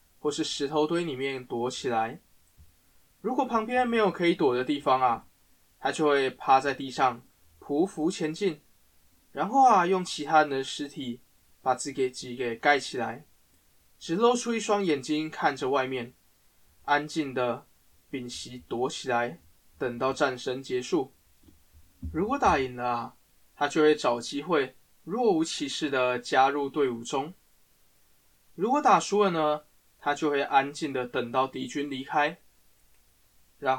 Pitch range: 120-155 Hz